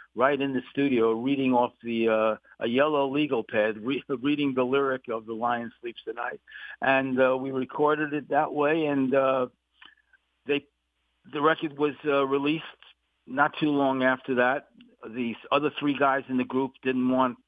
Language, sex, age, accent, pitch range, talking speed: English, male, 50-69, American, 115-140 Hz, 175 wpm